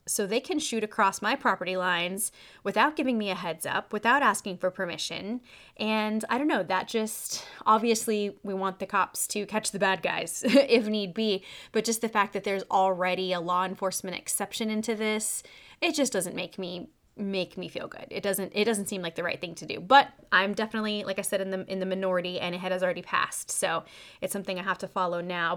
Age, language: 20-39, English